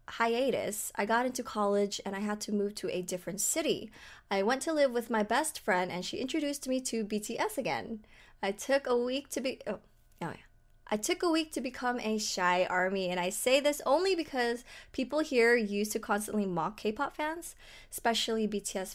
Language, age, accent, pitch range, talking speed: English, 20-39, American, 195-255 Hz, 200 wpm